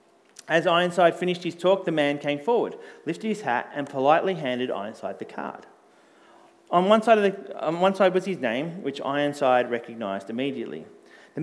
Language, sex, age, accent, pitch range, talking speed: English, male, 30-49, Australian, 135-190 Hz, 160 wpm